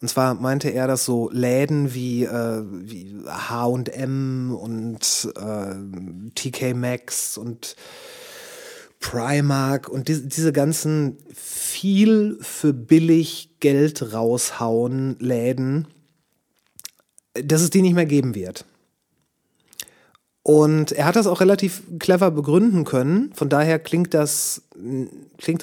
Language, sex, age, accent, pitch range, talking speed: German, male, 30-49, German, 125-165 Hz, 105 wpm